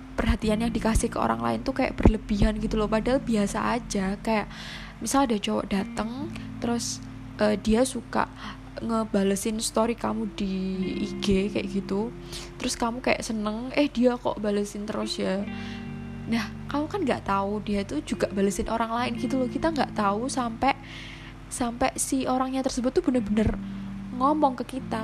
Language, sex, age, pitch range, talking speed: Indonesian, female, 10-29, 200-235 Hz, 160 wpm